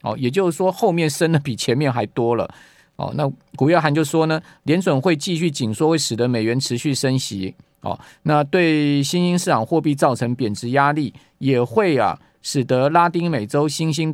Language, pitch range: Chinese, 130-170 Hz